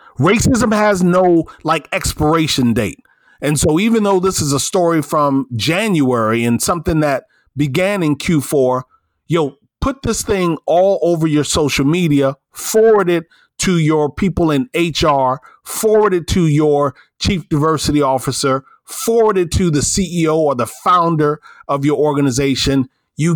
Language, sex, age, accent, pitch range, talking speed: English, male, 40-59, American, 140-180 Hz, 150 wpm